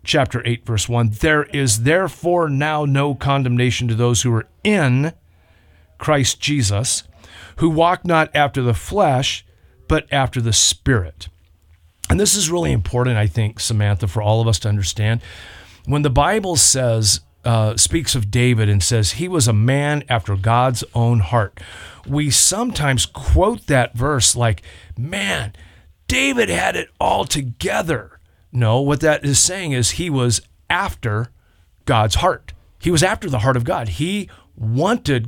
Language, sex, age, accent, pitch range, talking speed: English, male, 40-59, American, 100-135 Hz, 155 wpm